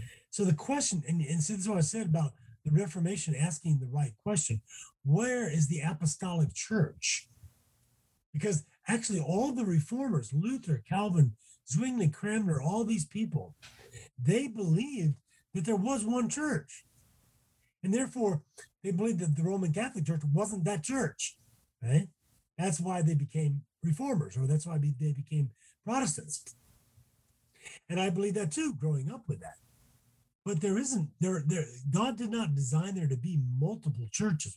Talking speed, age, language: 150 wpm, 30-49, English